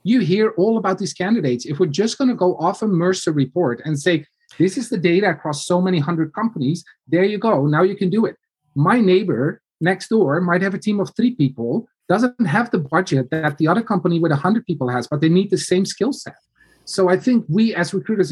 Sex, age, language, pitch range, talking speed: male, 30-49, English, 150-200 Hz, 235 wpm